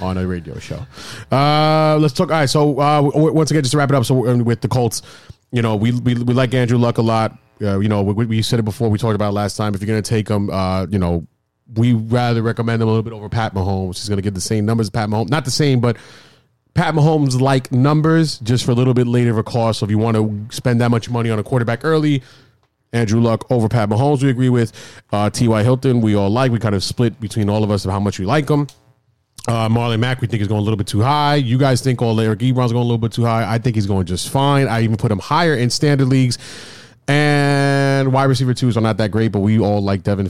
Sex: male